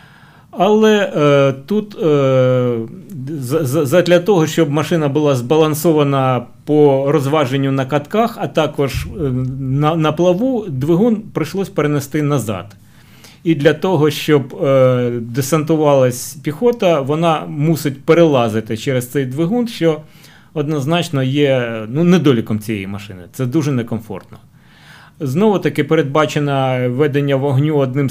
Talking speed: 115 wpm